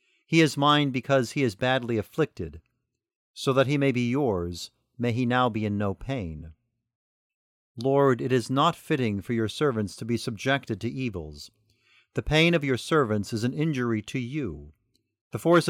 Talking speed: 175 wpm